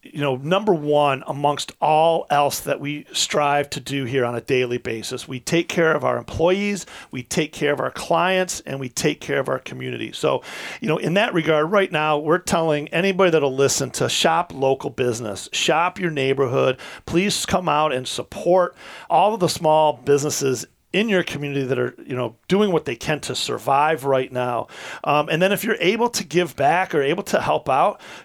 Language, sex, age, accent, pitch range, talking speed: English, male, 40-59, American, 135-160 Hz, 200 wpm